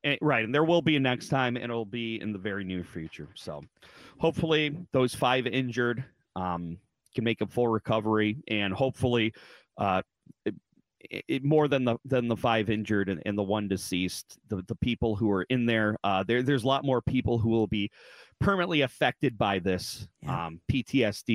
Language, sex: English, male